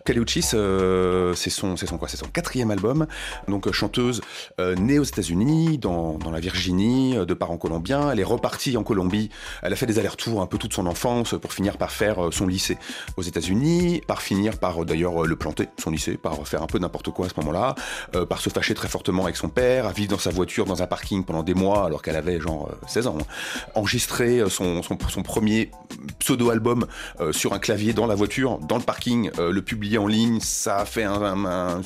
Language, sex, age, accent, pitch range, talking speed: French, male, 30-49, French, 95-125 Hz, 230 wpm